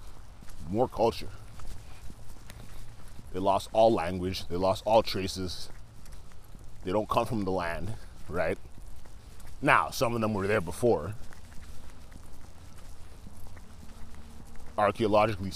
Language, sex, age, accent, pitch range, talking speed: English, male, 30-49, American, 80-105 Hz, 95 wpm